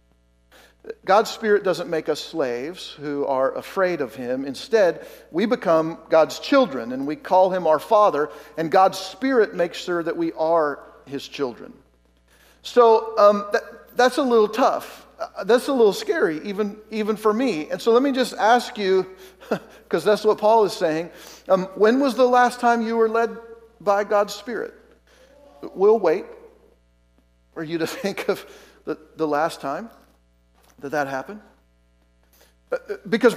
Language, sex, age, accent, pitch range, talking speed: English, male, 50-69, American, 160-235 Hz, 155 wpm